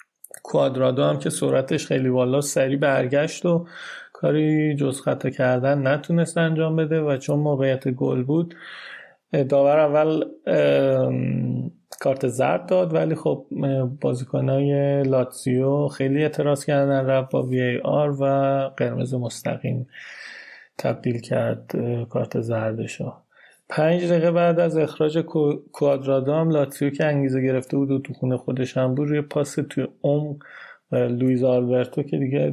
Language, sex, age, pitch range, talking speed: Persian, male, 30-49, 125-155 Hz, 130 wpm